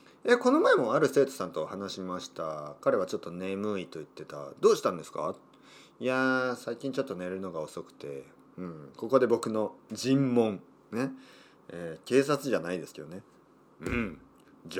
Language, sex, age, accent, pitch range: Japanese, male, 40-59, native, 90-130 Hz